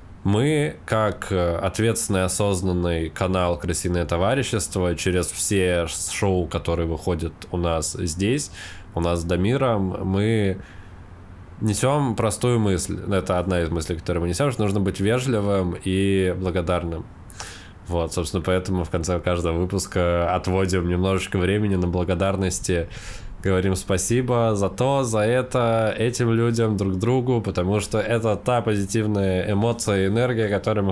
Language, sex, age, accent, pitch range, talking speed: Russian, male, 20-39, native, 90-110 Hz, 130 wpm